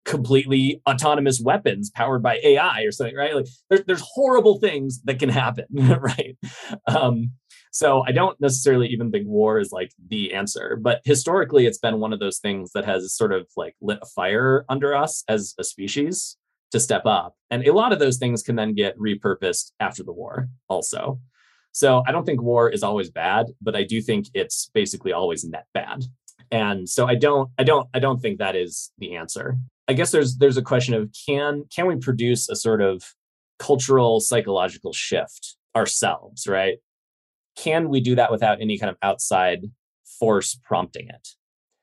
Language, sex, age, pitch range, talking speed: English, male, 30-49, 110-145 Hz, 185 wpm